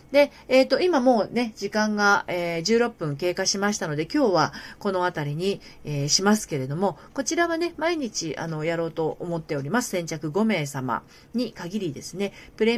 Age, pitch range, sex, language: 40-59, 150-230 Hz, female, Japanese